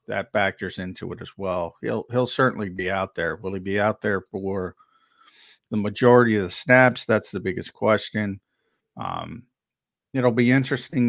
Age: 50-69